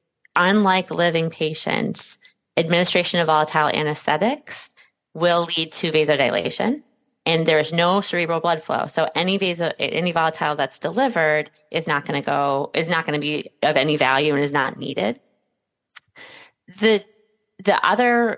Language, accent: English, American